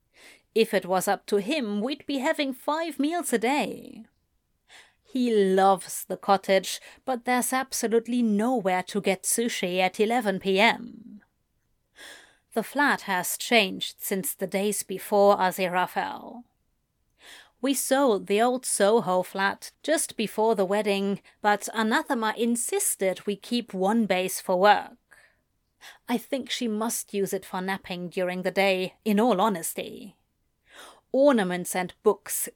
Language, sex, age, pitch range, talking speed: English, female, 30-49, 195-270 Hz, 130 wpm